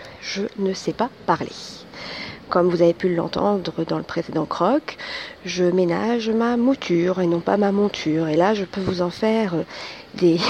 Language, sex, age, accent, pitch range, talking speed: French, female, 40-59, French, 175-225 Hz, 175 wpm